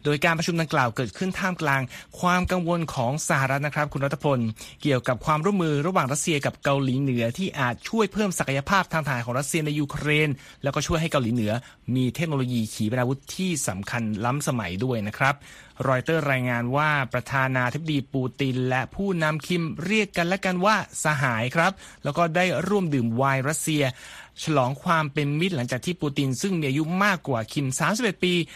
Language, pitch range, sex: Thai, 130-170 Hz, male